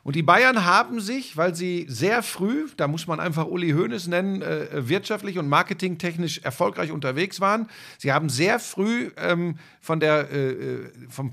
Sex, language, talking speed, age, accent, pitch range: male, German, 170 wpm, 50-69, German, 150-190 Hz